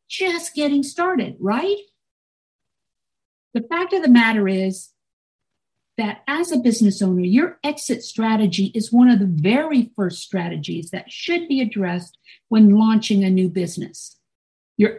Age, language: 50-69, English